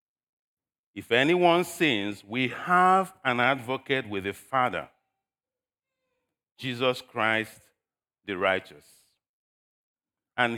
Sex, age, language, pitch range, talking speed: male, 50-69, English, 125-180 Hz, 85 wpm